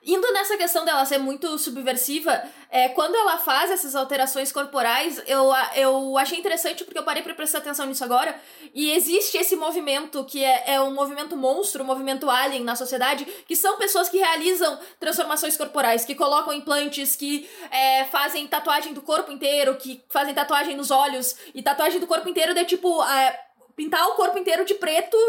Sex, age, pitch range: female, 20-39, 275-345 Hz